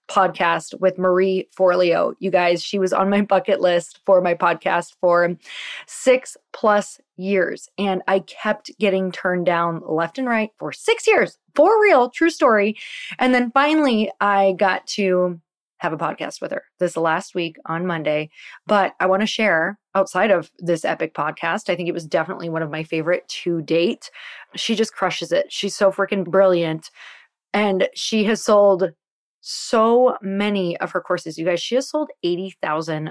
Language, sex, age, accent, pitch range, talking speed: English, female, 20-39, American, 175-220 Hz, 170 wpm